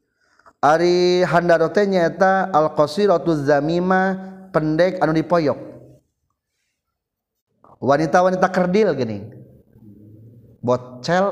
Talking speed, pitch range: 75 wpm, 120-165 Hz